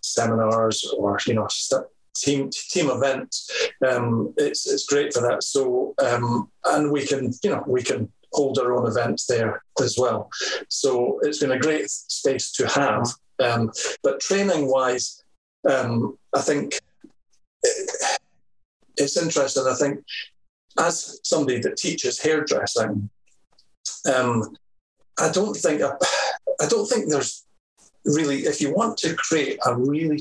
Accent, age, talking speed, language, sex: British, 40-59, 140 wpm, English, male